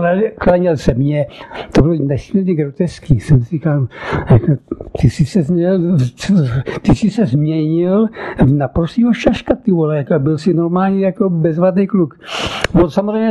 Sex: male